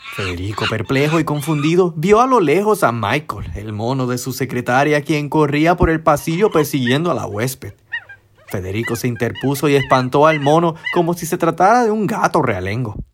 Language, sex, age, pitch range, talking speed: Spanish, male, 30-49, 115-170 Hz, 180 wpm